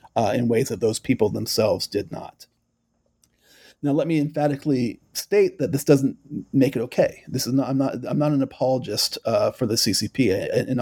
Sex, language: male, English